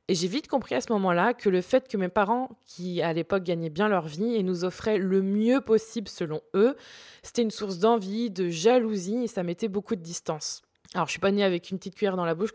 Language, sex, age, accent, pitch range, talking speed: French, female, 20-39, French, 180-225 Hz, 250 wpm